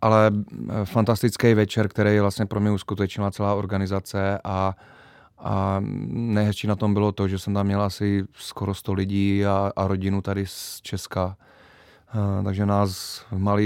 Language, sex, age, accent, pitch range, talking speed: Czech, male, 30-49, native, 100-110 Hz, 150 wpm